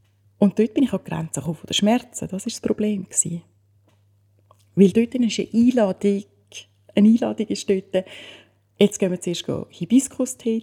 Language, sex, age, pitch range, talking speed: German, female, 30-49, 160-220 Hz, 150 wpm